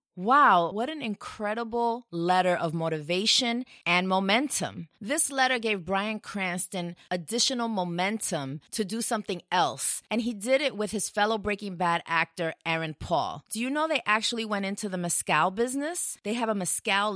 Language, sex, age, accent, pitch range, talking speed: English, female, 30-49, American, 175-230 Hz, 160 wpm